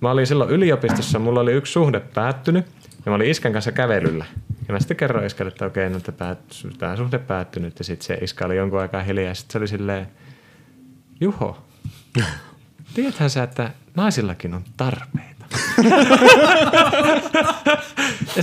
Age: 30-49